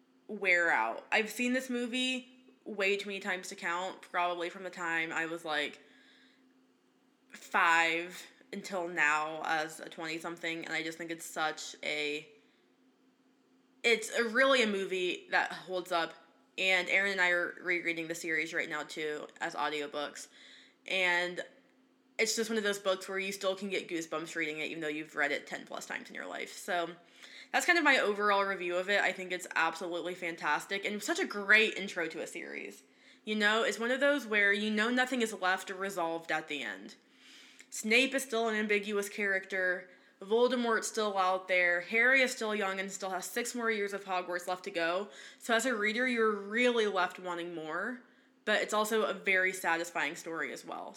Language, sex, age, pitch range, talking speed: English, female, 20-39, 170-220 Hz, 190 wpm